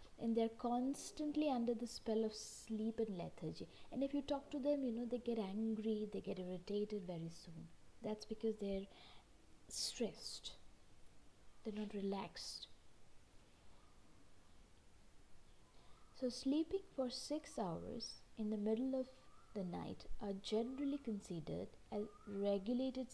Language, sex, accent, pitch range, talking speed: English, female, Indian, 190-250 Hz, 130 wpm